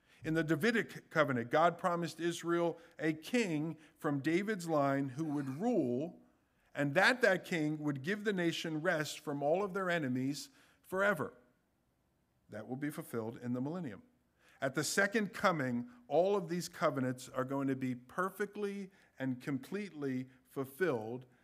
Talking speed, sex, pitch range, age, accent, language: 150 wpm, male, 135-180 Hz, 50-69, American, English